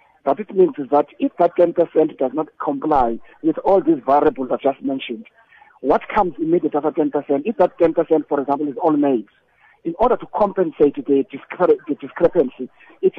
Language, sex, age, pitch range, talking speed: English, male, 50-69, 145-200 Hz, 175 wpm